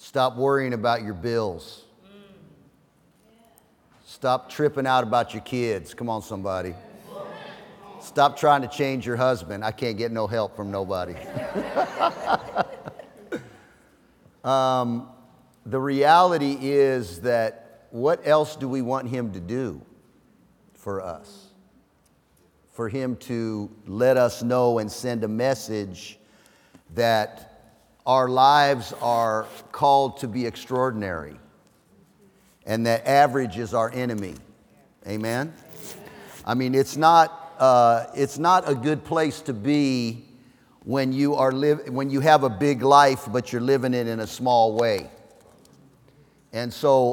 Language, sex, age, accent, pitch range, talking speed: English, male, 50-69, American, 115-140 Hz, 125 wpm